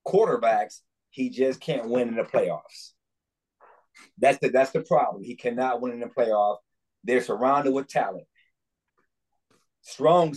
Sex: male